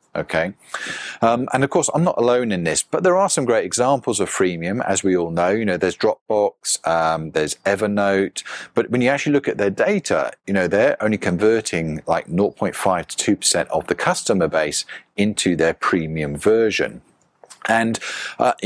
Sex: male